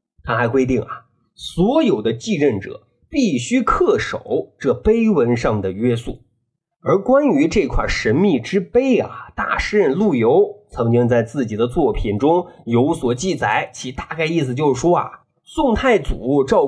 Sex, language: male, Chinese